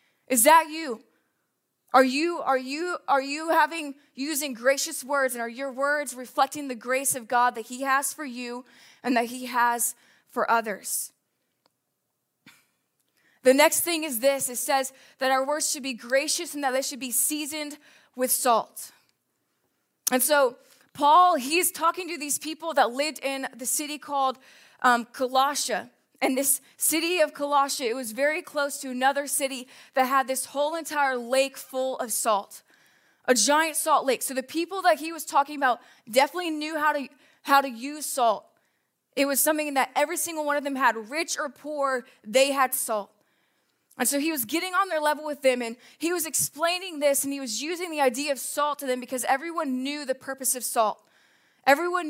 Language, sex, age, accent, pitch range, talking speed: English, female, 20-39, American, 260-305 Hz, 185 wpm